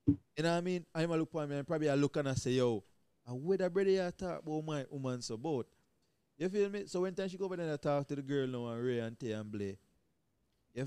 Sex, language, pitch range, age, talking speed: male, English, 120-165 Hz, 20-39, 260 wpm